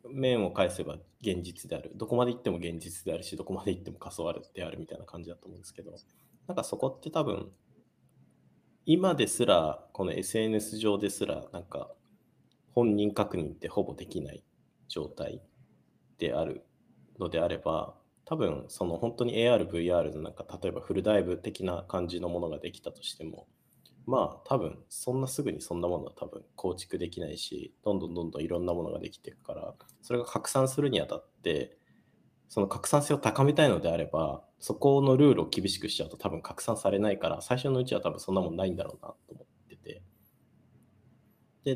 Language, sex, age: Japanese, male, 20-39